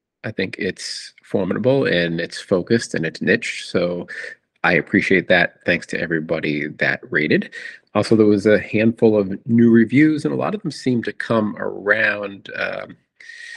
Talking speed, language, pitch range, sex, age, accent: 165 wpm, English, 105-150 Hz, male, 40-59, American